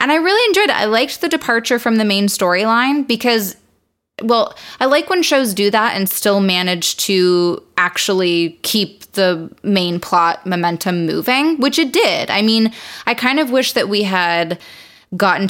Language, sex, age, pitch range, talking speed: English, female, 20-39, 175-230 Hz, 175 wpm